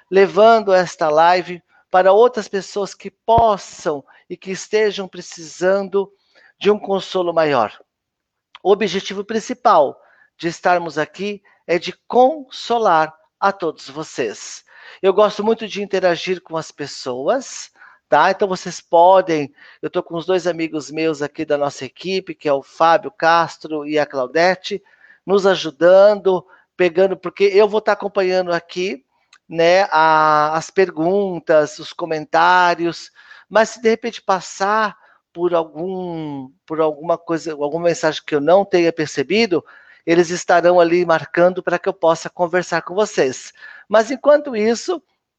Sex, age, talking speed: male, 50-69, 140 wpm